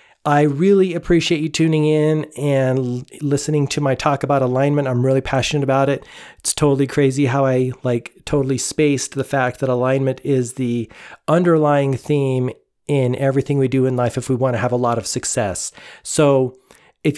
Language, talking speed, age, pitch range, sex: English, 180 wpm, 40-59, 130-150 Hz, male